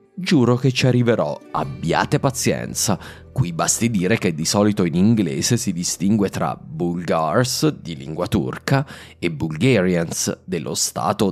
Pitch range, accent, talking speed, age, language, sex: 85-125 Hz, native, 135 wpm, 30-49, Italian, male